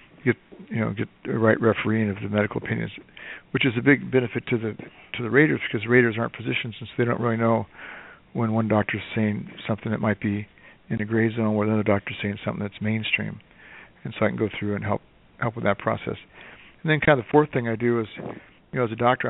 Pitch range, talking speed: 110-120 Hz, 245 wpm